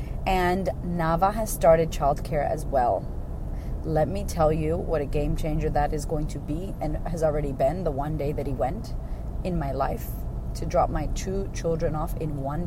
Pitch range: 150-190 Hz